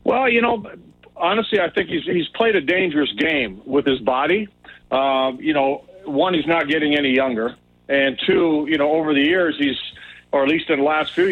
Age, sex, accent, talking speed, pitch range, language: 40-59, male, American, 205 wpm, 135-155 Hz, English